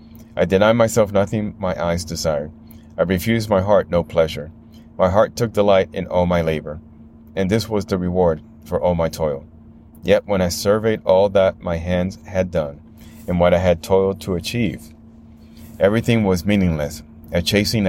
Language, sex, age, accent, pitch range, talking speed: English, male, 30-49, American, 80-105 Hz, 175 wpm